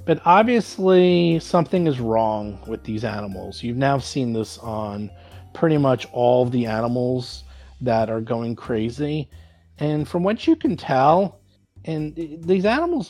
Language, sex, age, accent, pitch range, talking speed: English, male, 40-59, American, 110-165 Hz, 145 wpm